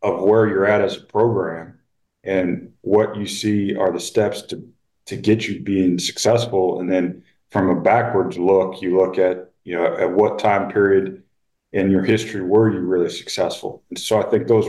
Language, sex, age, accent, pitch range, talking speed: English, male, 40-59, American, 95-105 Hz, 190 wpm